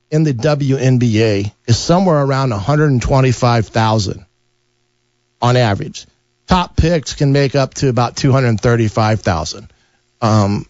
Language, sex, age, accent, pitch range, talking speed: English, male, 40-59, American, 120-140 Hz, 100 wpm